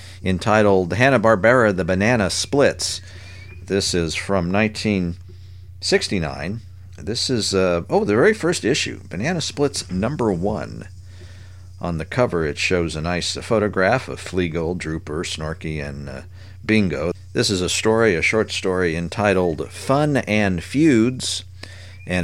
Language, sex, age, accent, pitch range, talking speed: English, male, 50-69, American, 85-105 Hz, 130 wpm